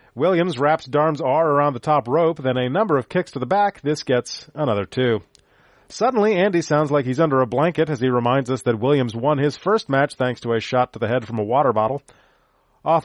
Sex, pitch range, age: male, 125-165 Hz, 40-59